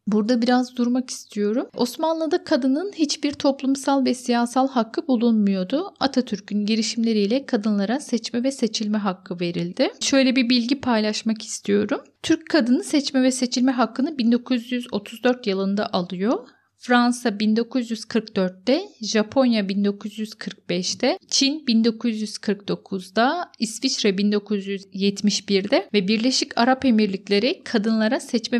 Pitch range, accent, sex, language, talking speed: 200-250 Hz, native, female, Turkish, 100 wpm